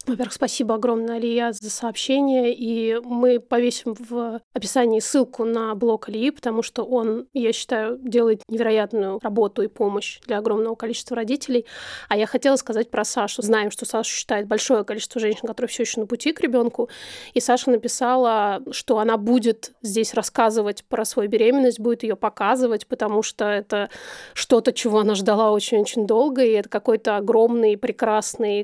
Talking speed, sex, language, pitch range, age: 160 wpm, female, Russian, 220-245 Hz, 30-49